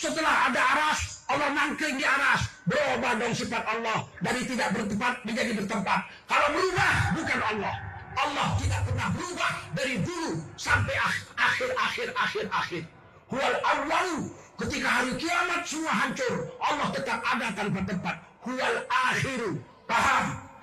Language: Indonesian